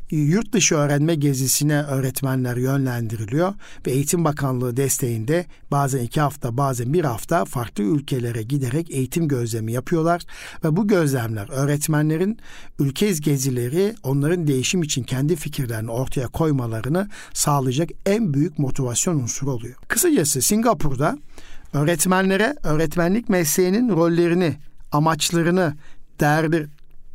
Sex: male